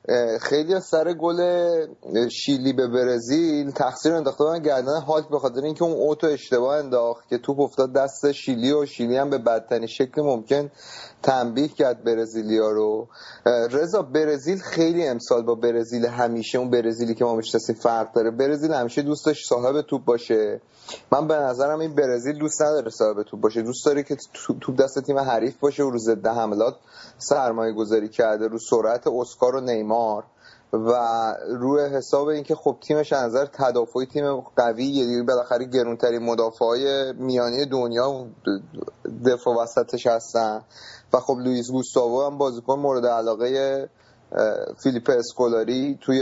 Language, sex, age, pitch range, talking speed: Persian, male, 30-49, 120-145 Hz, 145 wpm